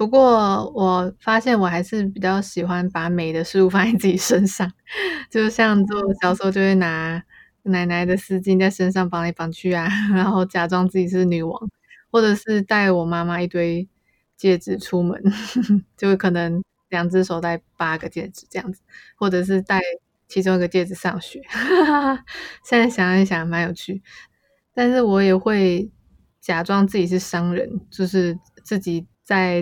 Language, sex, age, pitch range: Chinese, female, 20-39, 175-205 Hz